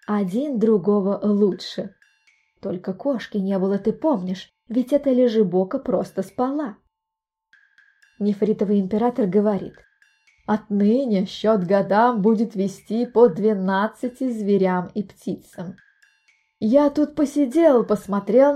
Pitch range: 200-280 Hz